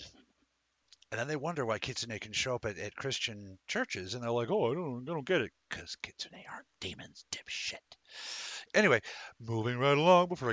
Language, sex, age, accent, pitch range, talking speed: English, male, 50-69, American, 100-125 Hz, 190 wpm